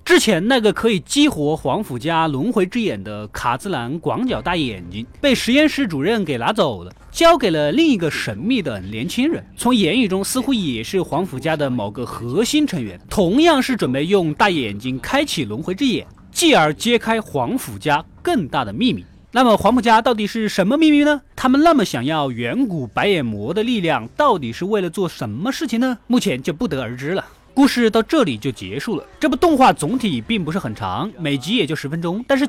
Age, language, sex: 20-39, Chinese, male